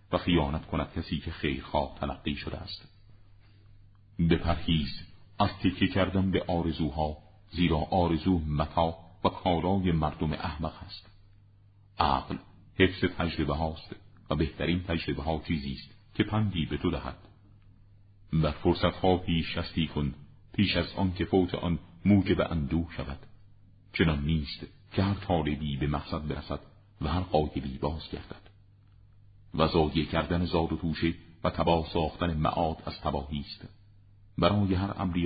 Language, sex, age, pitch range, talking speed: Persian, male, 50-69, 80-100 Hz, 130 wpm